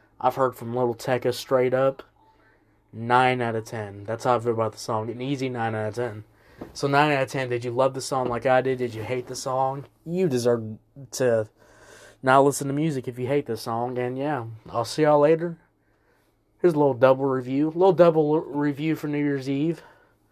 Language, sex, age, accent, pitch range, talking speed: English, male, 20-39, American, 115-150 Hz, 215 wpm